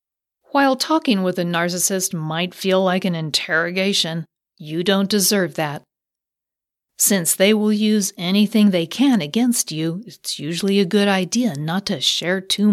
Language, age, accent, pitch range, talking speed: English, 50-69, American, 165-215 Hz, 150 wpm